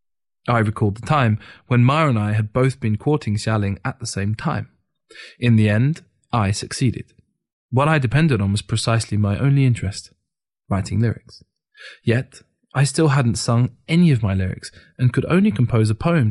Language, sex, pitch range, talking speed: English, male, 105-130 Hz, 175 wpm